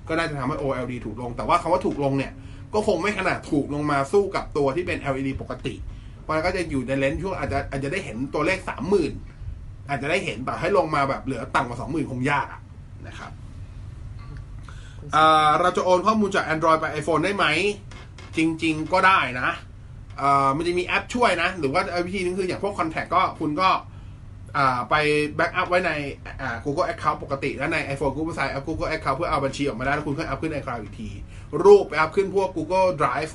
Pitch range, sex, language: 115-160 Hz, male, Thai